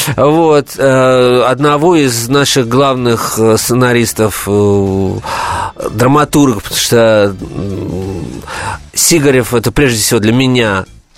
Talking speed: 80 wpm